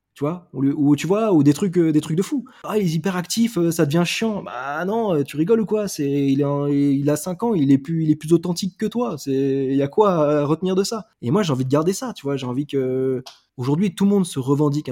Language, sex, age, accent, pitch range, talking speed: French, male, 20-39, French, 130-170 Hz, 260 wpm